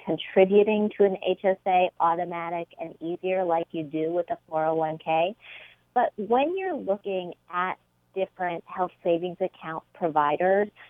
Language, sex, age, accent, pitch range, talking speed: English, female, 40-59, American, 160-190 Hz, 125 wpm